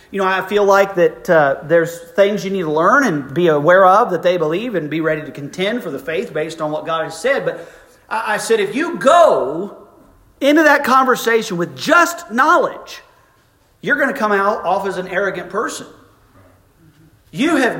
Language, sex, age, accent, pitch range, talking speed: English, male, 40-59, American, 135-215 Hz, 195 wpm